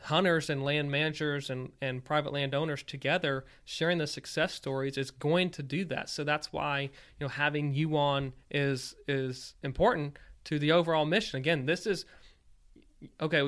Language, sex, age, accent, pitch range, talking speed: English, male, 20-39, American, 140-165 Hz, 165 wpm